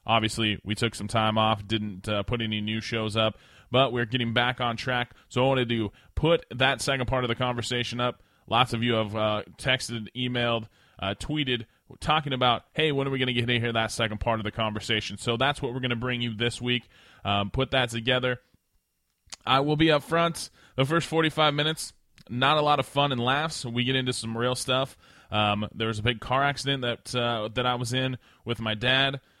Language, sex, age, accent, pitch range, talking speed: English, male, 20-39, American, 110-130 Hz, 225 wpm